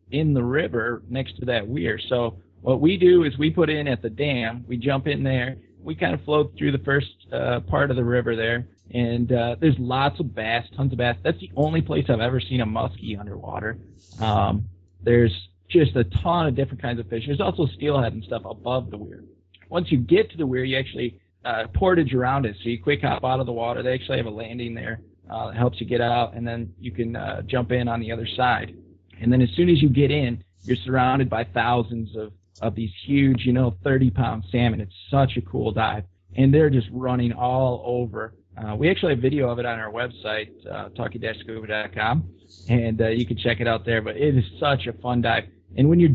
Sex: male